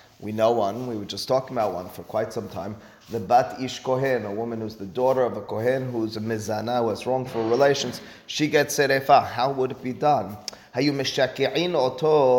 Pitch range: 110-130 Hz